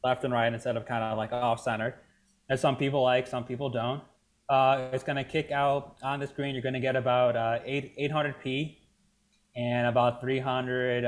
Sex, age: male, 20-39